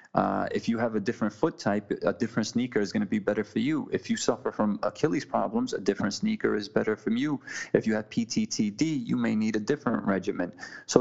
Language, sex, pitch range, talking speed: English, male, 95-115 Hz, 230 wpm